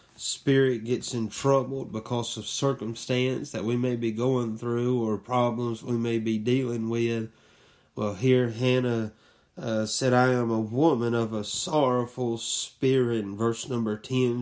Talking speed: 155 wpm